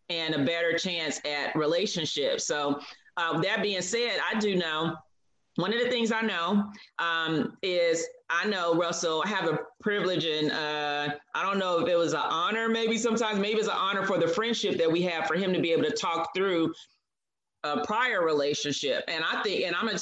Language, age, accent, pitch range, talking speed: English, 40-59, American, 165-205 Hz, 200 wpm